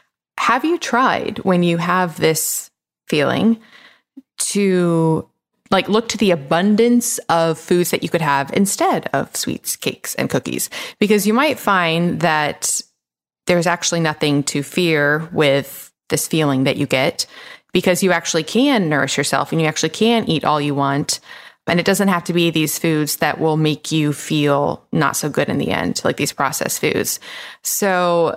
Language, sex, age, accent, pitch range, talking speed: English, female, 20-39, American, 150-195 Hz, 170 wpm